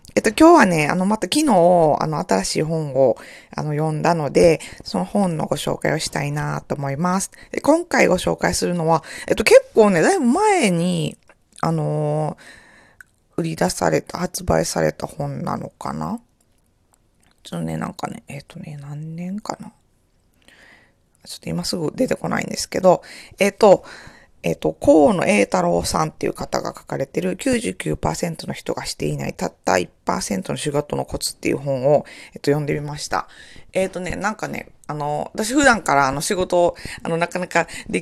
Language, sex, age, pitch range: Japanese, female, 20-39, 145-195 Hz